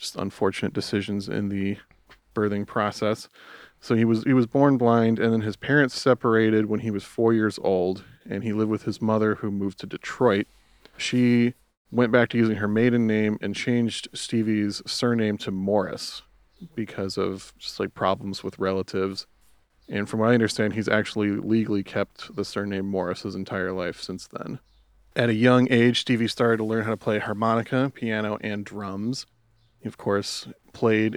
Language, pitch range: English, 100-115 Hz